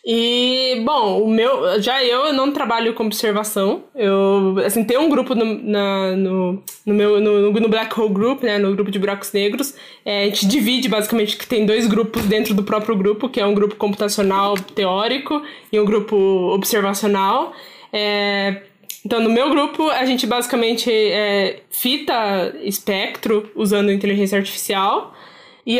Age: 10-29